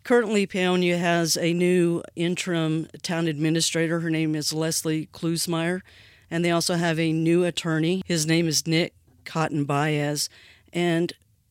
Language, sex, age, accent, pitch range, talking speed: English, female, 40-59, American, 150-175 Hz, 140 wpm